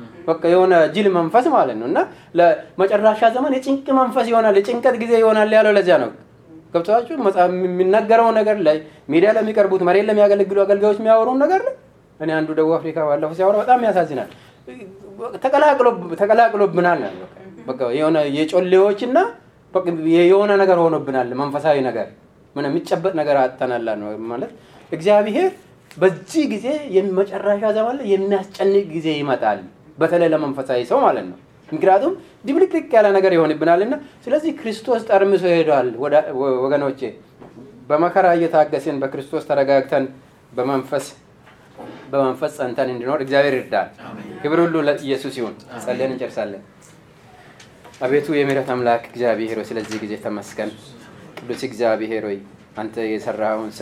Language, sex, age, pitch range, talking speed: English, male, 30-49, 135-210 Hz, 50 wpm